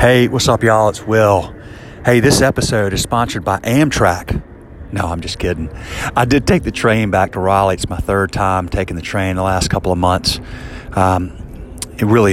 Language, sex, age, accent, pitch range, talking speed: English, male, 40-59, American, 95-110 Hz, 195 wpm